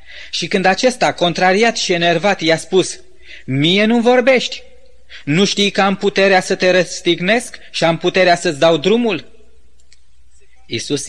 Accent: native